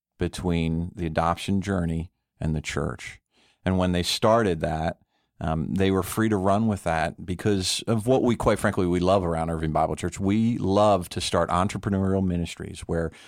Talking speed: 175 wpm